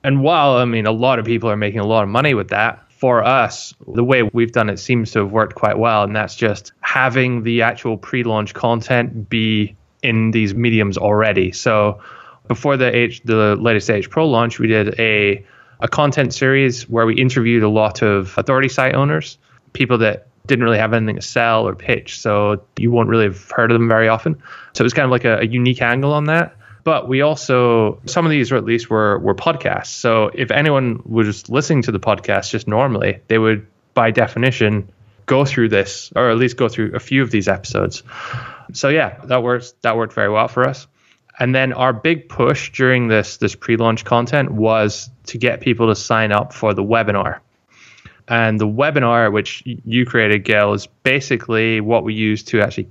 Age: 20-39